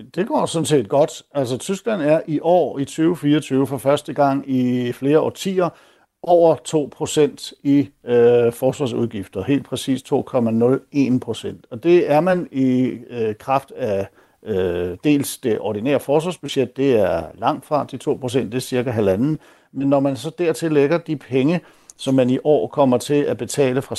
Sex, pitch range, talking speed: male, 125-155 Hz, 165 wpm